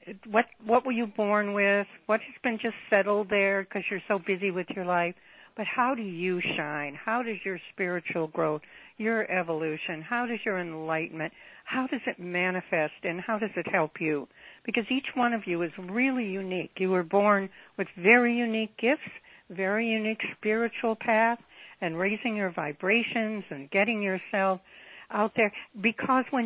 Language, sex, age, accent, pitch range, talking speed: English, female, 60-79, American, 180-230 Hz, 170 wpm